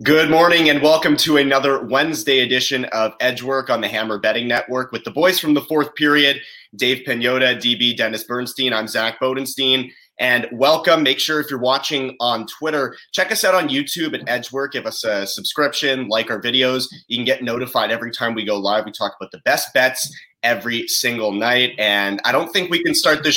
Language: English